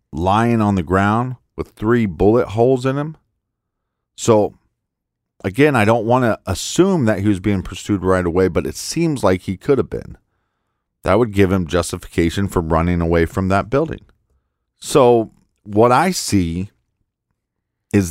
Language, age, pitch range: English, 40-59, 95-120 Hz